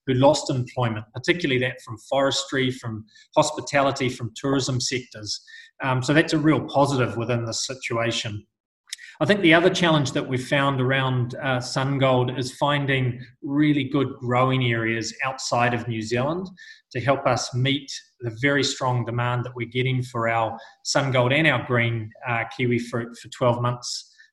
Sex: male